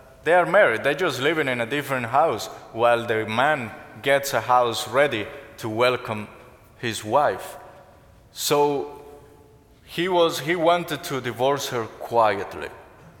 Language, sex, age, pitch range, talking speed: English, male, 20-39, 115-155 Hz, 130 wpm